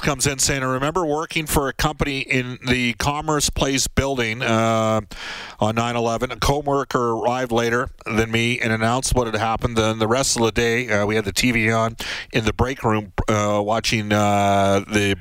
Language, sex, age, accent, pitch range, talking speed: English, male, 40-59, American, 105-125 Hz, 195 wpm